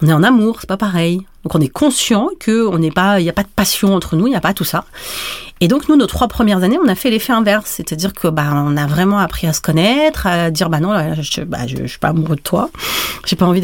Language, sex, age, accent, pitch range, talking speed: French, female, 30-49, French, 170-225 Hz, 275 wpm